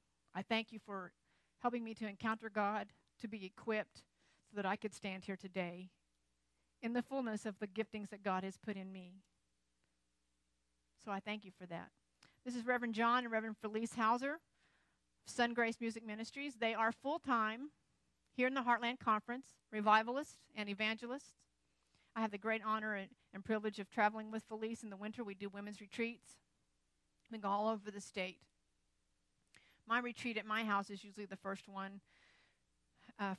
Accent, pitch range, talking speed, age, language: American, 195-225 Hz, 170 wpm, 50-69, English